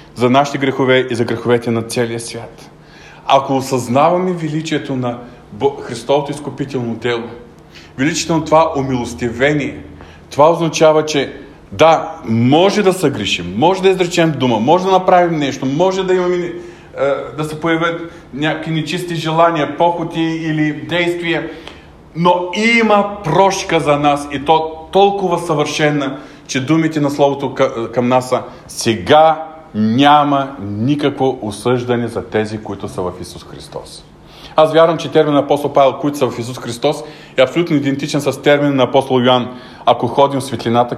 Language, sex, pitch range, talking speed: Bulgarian, male, 120-160 Hz, 145 wpm